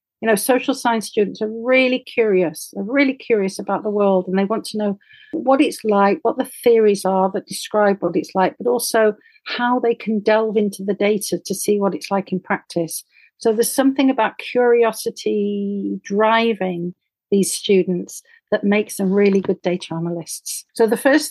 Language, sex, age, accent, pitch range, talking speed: English, female, 50-69, British, 195-245 Hz, 185 wpm